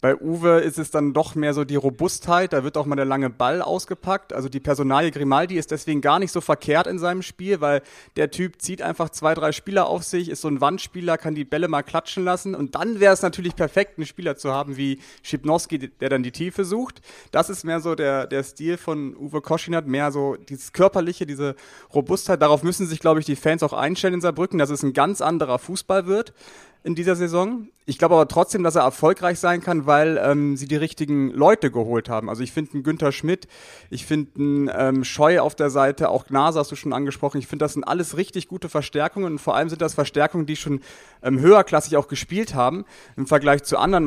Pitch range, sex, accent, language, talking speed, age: 140-175 Hz, male, German, German, 225 wpm, 30-49